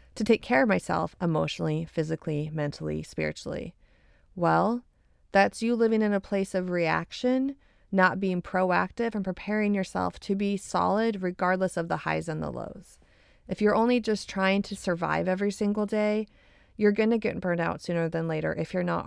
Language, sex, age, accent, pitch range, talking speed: English, female, 30-49, American, 170-210 Hz, 175 wpm